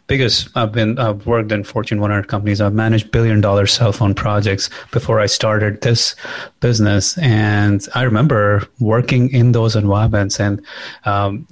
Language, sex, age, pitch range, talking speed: English, male, 30-49, 105-130 Hz, 145 wpm